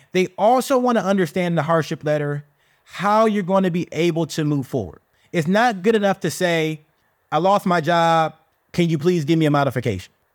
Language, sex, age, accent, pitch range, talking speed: English, male, 30-49, American, 150-190 Hz, 185 wpm